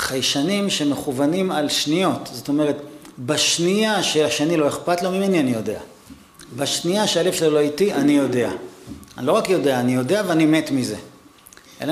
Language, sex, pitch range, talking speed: Hebrew, male, 135-180 Hz, 155 wpm